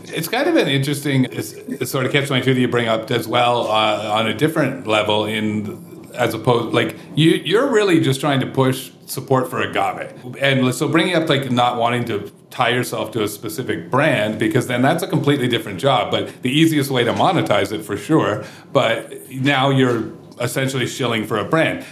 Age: 40-59